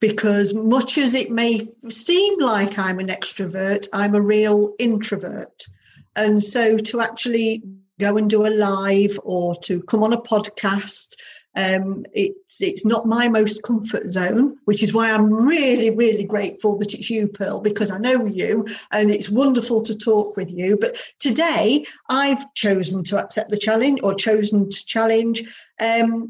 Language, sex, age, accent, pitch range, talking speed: English, female, 50-69, British, 205-245 Hz, 165 wpm